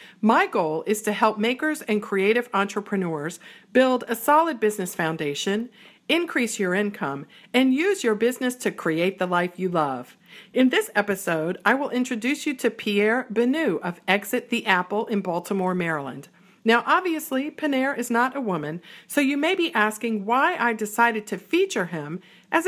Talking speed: 165 wpm